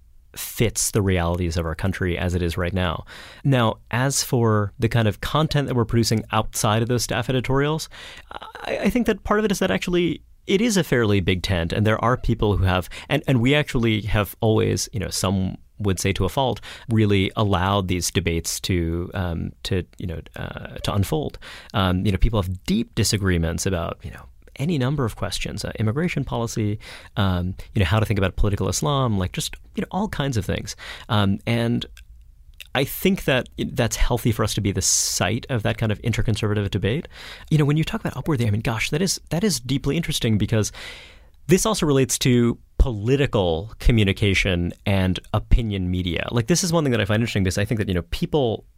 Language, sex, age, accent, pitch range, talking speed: English, male, 30-49, American, 95-130 Hz, 210 wpm